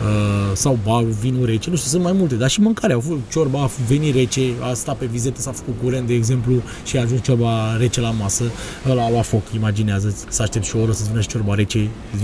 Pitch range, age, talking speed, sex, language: 105-130 Hz, 20-39, 240 wpm, male, Romanian